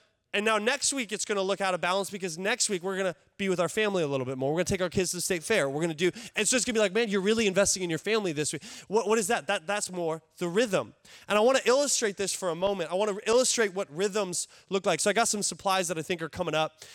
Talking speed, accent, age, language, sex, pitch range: 325 wpm, American, 20-39, English, male, 180-225 Hz